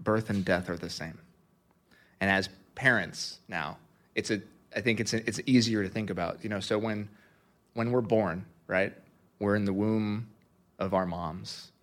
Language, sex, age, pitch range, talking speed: English, male, 30-49, 100-120 Hz, 185 wpm